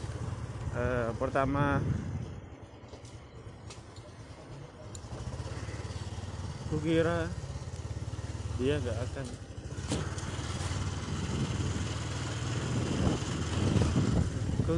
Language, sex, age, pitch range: Indonesian, male, 20-39, 110-145 Hz